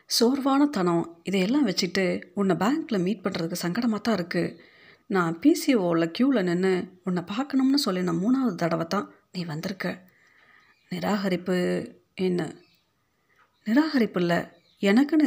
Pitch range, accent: 170-230 Hz, native